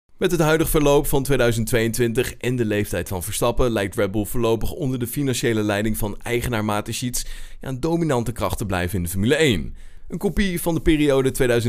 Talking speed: 185 wpm